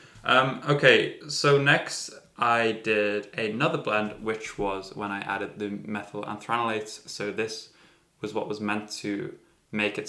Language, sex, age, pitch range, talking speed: English, male, 10-29, 105-125 Hz, 150 wpm